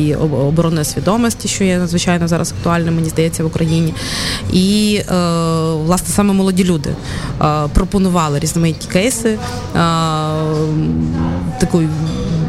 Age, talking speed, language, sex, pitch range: 20-39, 95 wpm, Ukrainian, female, 155-180 Hz